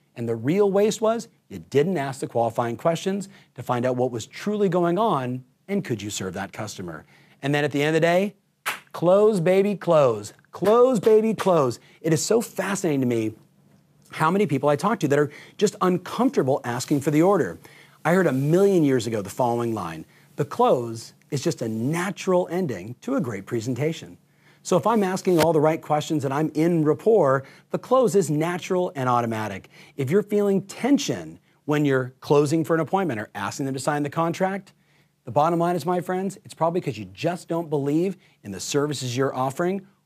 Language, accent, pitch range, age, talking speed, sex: English, American, 130-185 Hz, 40-59, 200 wpm, male